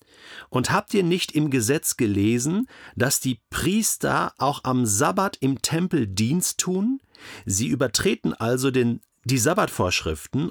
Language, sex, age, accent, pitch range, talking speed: German, male, 40-59, German, 110-145 Hz, 125 wpm